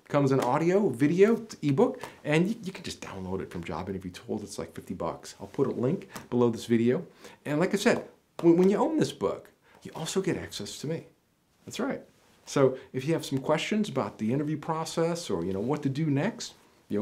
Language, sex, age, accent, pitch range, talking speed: English, male, 40-59, American, 105-150 Hz, 220 wpm